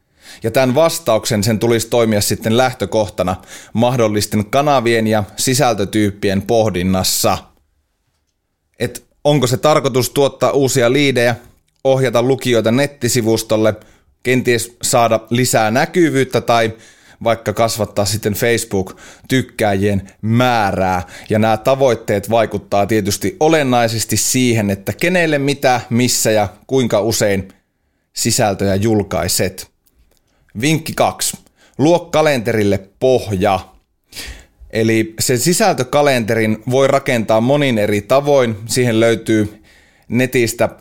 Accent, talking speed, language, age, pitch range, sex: native, 95 wpm, Finnish, 30-49, 105-130 Hz, male